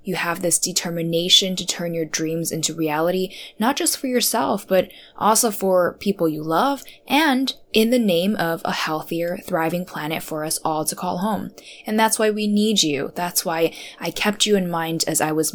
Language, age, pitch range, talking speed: English, 10-29, 165-210 Hz, 195 wpm